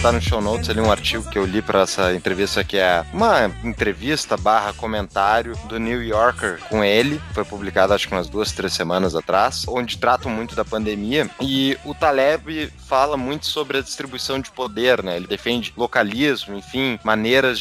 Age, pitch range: 20-39, 105-140 Hz